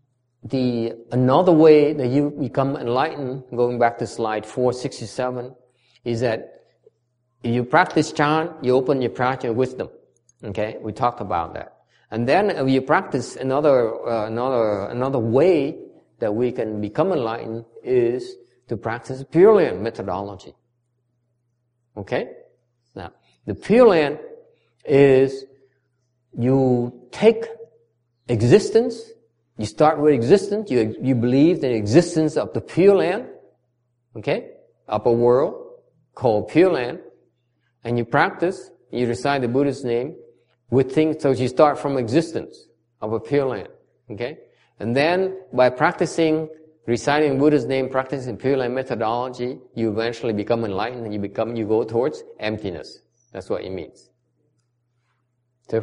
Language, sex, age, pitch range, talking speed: English, male, 50-69, 120-145 Hz, 135 wpm